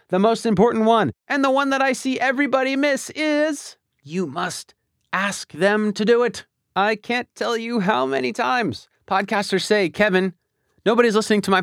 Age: 30-49